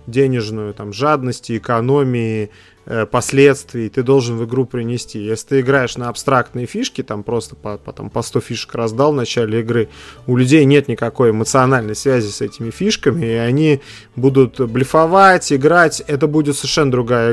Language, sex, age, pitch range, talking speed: Russian, male, 30-49, 110-135 Hz, 165 wpm